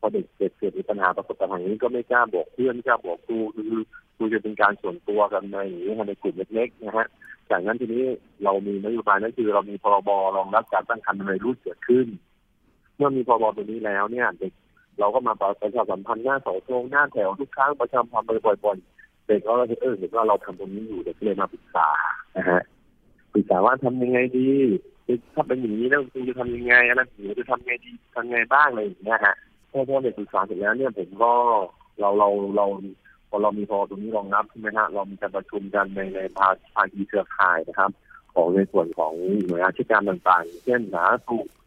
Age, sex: 30-49, male